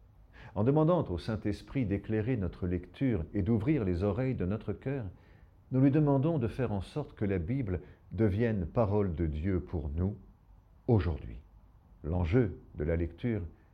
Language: French